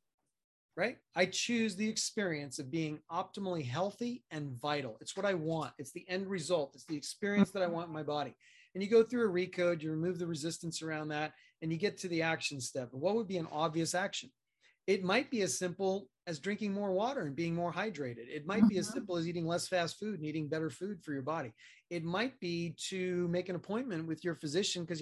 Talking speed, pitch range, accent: 225 wpm, 155-195 Hz, American